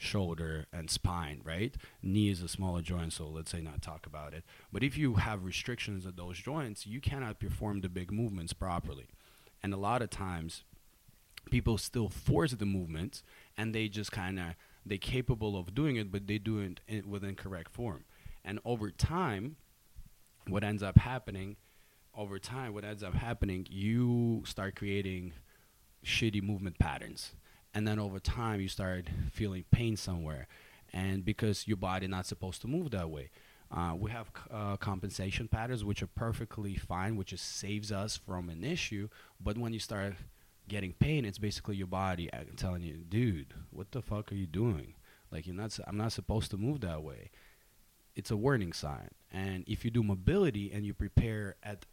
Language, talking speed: English, 180 wpm